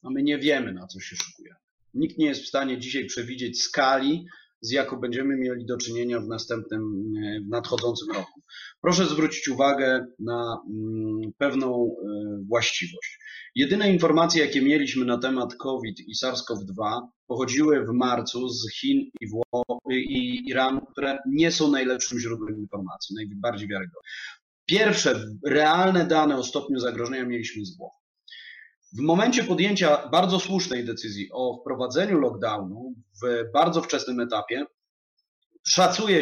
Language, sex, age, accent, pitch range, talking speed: Polish, male, 30-49, native, 120-155 Hz, 140 wpm